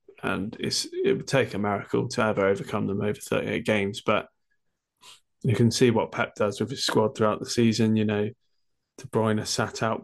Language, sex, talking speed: English, male, 195 wpm